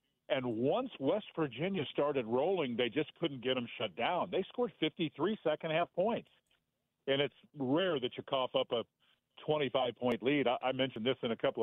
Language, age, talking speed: English, 50-69, 185 wpm